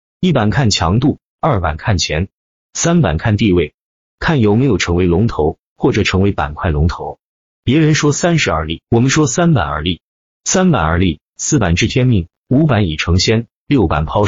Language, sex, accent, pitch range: Chinese, male, native, 85-130 Hz